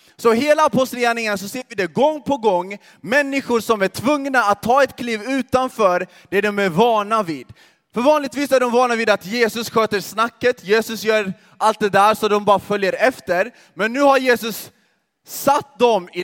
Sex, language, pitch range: male, Swedish, 185-235 Hz